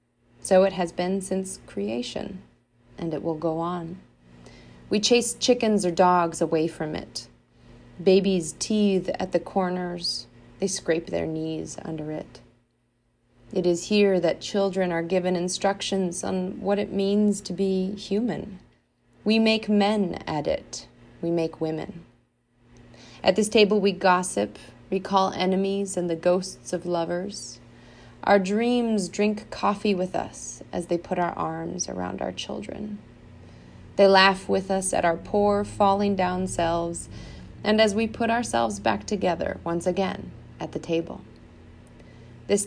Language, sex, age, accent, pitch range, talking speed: English, female, 30-49, American, 125-195 Hz, 140 wpm